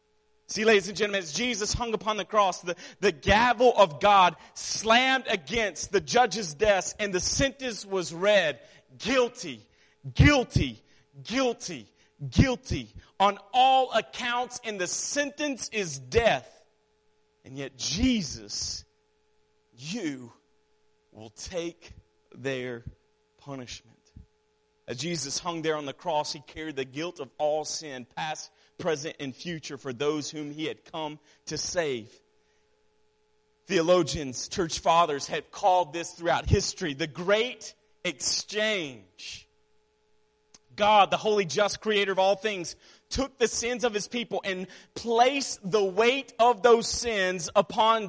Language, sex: English, male